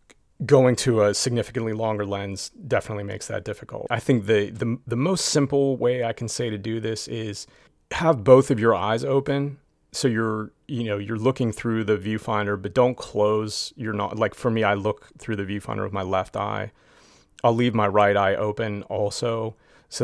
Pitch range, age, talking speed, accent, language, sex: 100-120 Hz, 30-49, 195 wpm, American, English, male